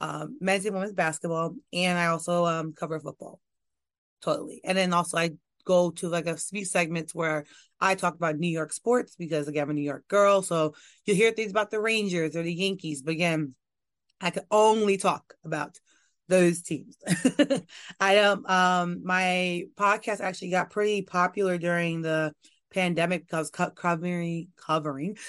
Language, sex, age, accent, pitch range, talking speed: English, female, 30-49, American, 165-195 Hz, 170 wpm